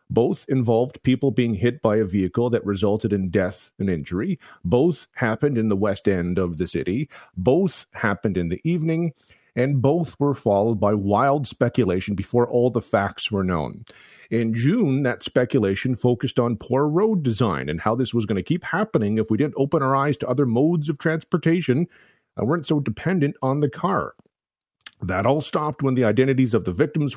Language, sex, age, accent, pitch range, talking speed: English, male, 40-59, American, 110-145 Hz, 190 wpm